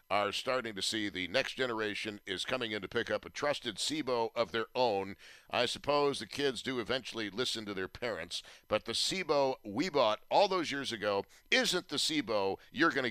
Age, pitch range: 50-69, 105-135 Hz